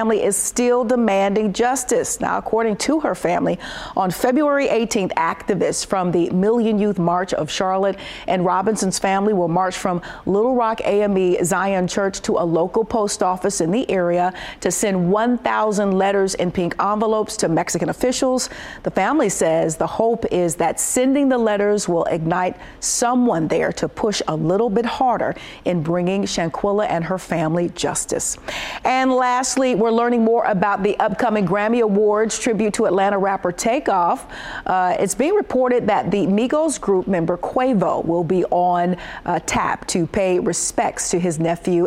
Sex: female